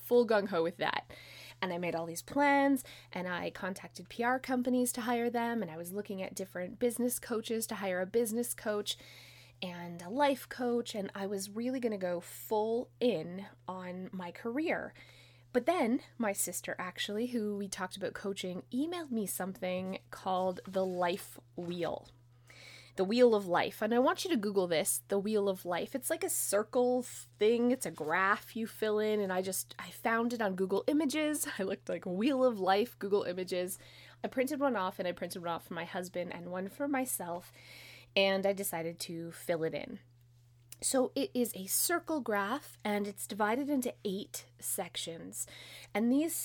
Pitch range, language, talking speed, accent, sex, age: 175-235 Hz, English, 185 wpm, American, female, 20-39